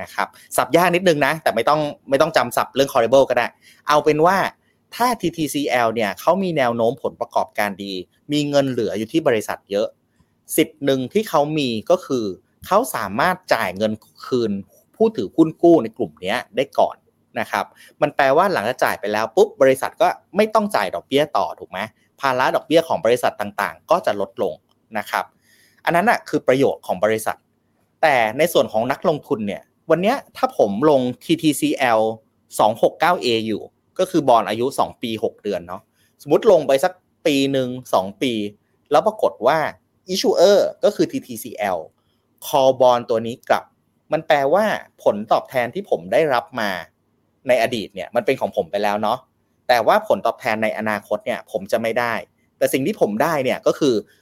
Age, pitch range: 30-49, 110-155 Hz